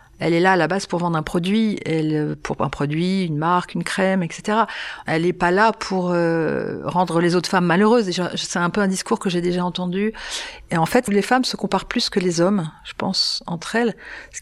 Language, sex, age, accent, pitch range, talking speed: French, female, 40-59, French, 170-205 Hz, 235 wpm